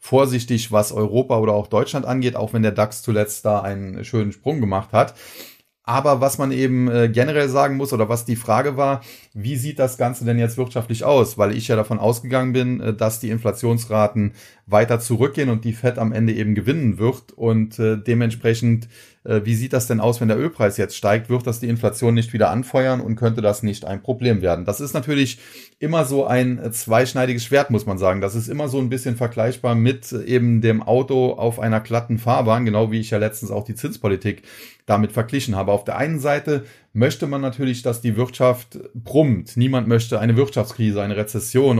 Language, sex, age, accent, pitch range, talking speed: German, male, 30-49, German, 110-130 Hz, 195 wpm